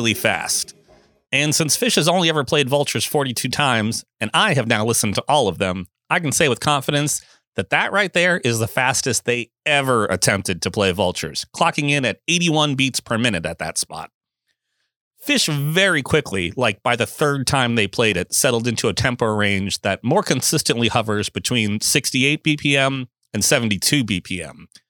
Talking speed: 180 wpm